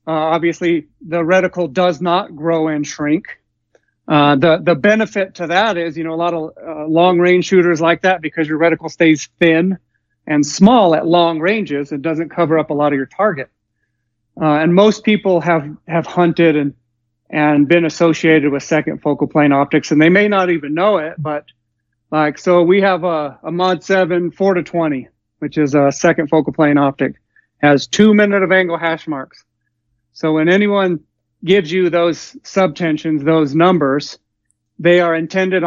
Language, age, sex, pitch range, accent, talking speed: English, 40-59, male, 145-175 Hz, American, 180 wpm